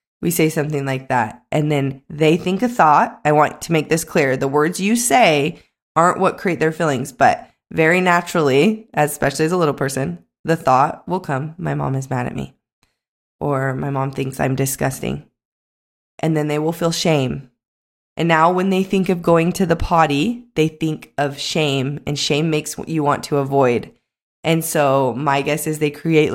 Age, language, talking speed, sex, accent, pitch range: 20-39, English, 195 wpm, female, American, 140-175 Hz